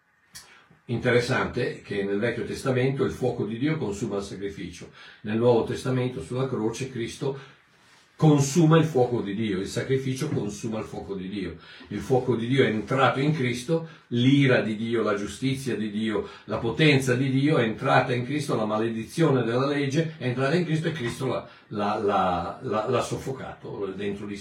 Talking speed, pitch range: 165 wpm, 110-145 Hz